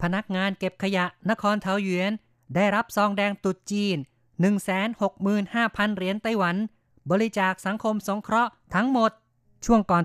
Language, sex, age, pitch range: Thai, female, 30-49, 170-200 Hz